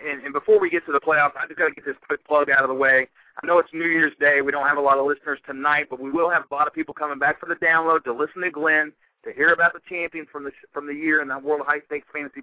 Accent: American